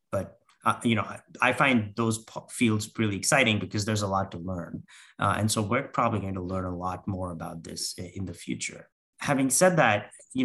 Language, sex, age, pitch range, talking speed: English, male, 30-49, 95-120 Hz, 220 wpm